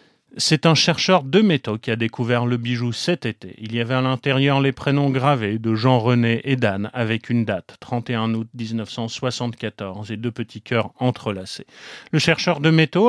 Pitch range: 120-155 Hz